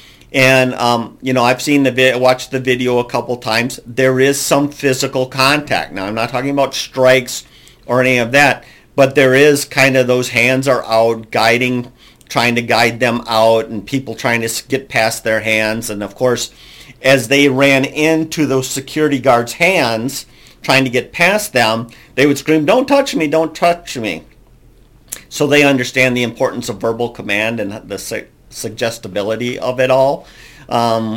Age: 50-69